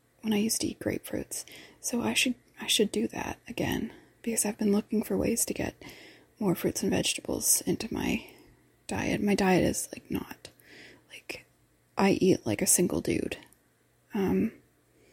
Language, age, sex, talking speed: English, 20-39, female, 165 wpm